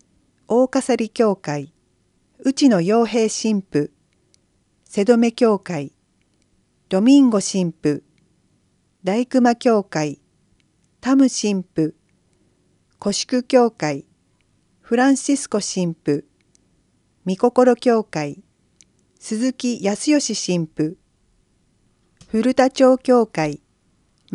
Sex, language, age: female, Japanese, 40-59